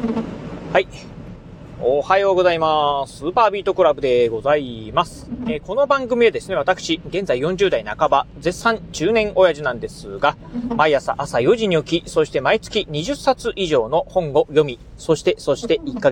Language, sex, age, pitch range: Japanese, male, 30-49, 145-230 Hz